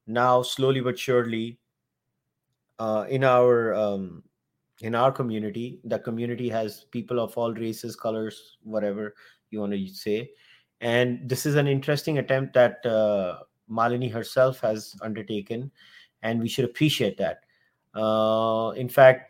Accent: Indian